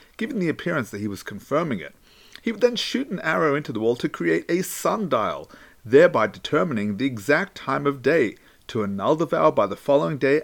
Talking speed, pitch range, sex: 205 wpm, 135-200 Hz, male